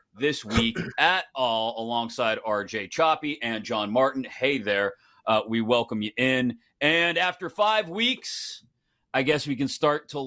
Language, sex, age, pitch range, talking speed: English, male, 40-59, 130-170 Hz, 160 wpm